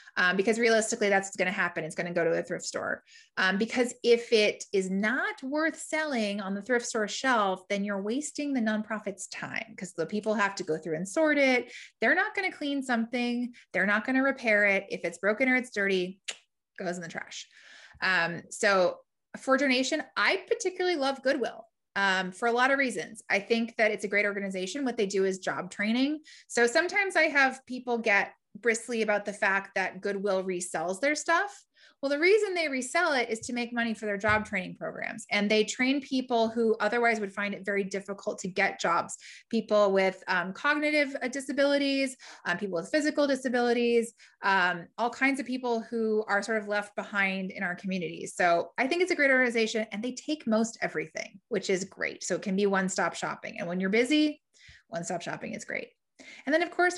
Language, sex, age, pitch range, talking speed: English, female, 20-39, 195-260 Hz, 205 wpm